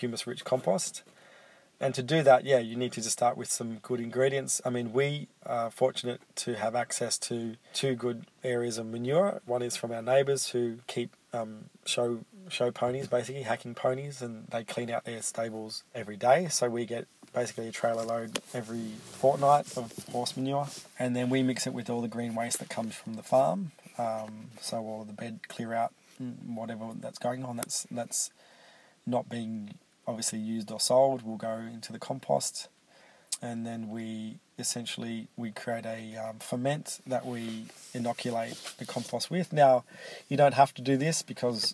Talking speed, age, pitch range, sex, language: 180 wpm, 20-39, 115-125 Hz, male, English